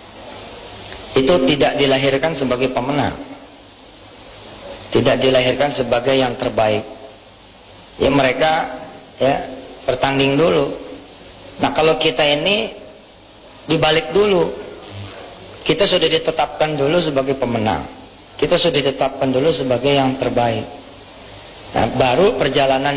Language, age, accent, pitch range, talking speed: English, 40-59, Indonesian, 120-140 Hz, 95 wpm